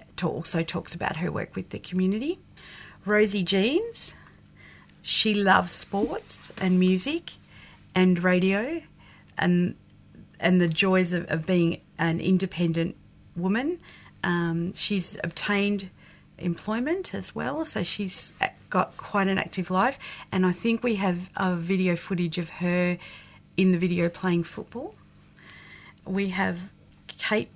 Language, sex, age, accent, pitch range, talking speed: English, female, 40-59, Australian, 175-195 Hz, 130 wpm